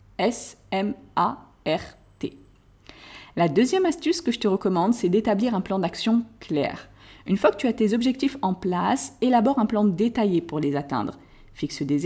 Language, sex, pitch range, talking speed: French, female, 185-240 Hz, 160 wpm